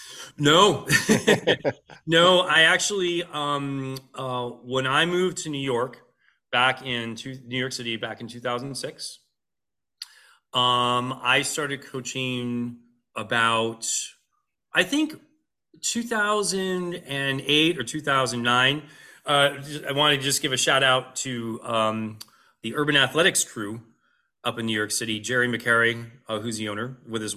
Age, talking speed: 30-49, 130 wpm